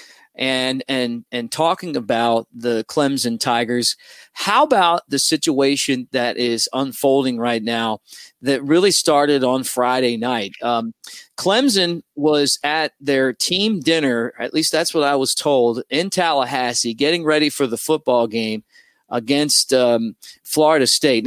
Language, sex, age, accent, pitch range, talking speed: English, male, 40-59, American, 125-160 Hz, 140 wpm